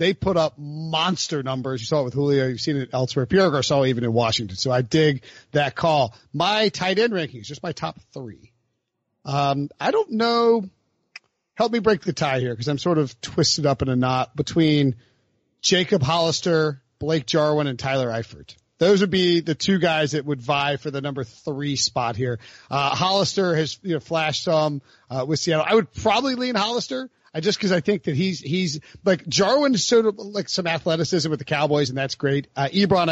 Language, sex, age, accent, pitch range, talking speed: English, male, 40-59, American, 135-175 Hz, 195 wpm